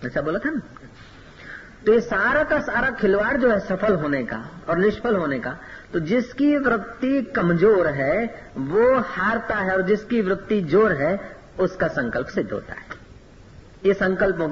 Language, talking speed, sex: Hindi, 160 wpm, female